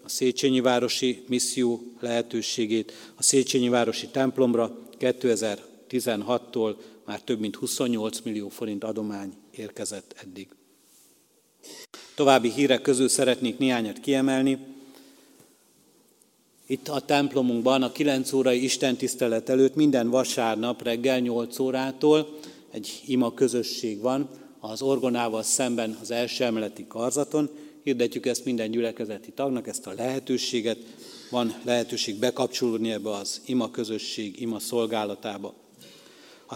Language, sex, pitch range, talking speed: Hungarian, male, 115-130 Hz, 110 wpm